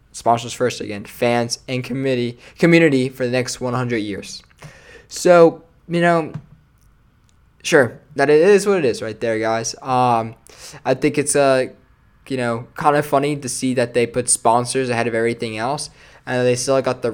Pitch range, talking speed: 120-150 Hz, 175 wpm